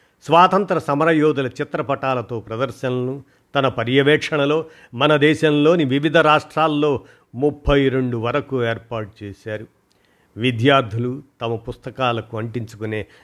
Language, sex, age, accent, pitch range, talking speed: Telugu, male, 50-69, native, 115-140 Hz, 90 wpm